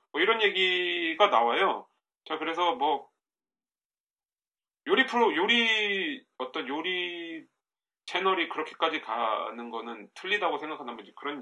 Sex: male